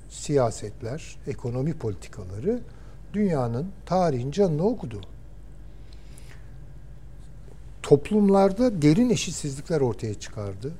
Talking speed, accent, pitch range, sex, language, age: 65 wpm, native, 115-150 Hz, male, Turkish, 60-79